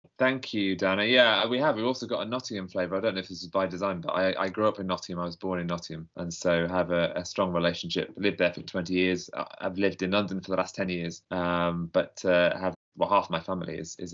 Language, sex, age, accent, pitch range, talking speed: English, male, 20-39, British, 90-105 Hz, 265 wpm